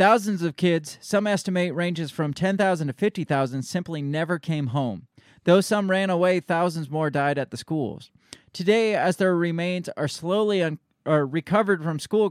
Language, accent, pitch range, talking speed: English, American, 140-180 Hz, 160 wpm